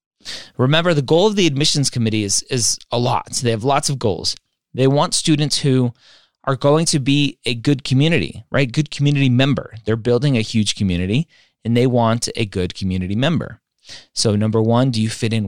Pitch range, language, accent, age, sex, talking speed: 105-140 Hz, English, American, 30-49, male, 195 wpm